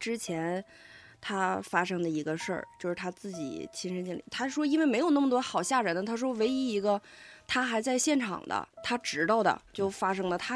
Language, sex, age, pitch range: Chinese, female, 20-39, 180-260 Hz